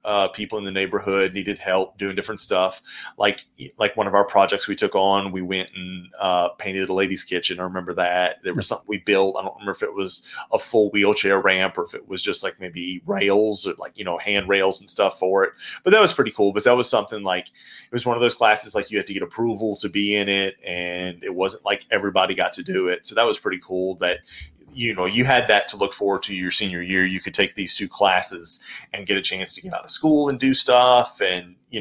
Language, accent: English, American